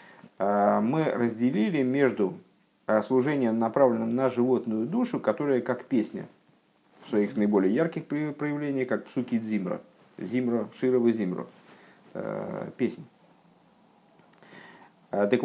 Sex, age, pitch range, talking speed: male, 50-69, 115-135 Hz, 95 wpm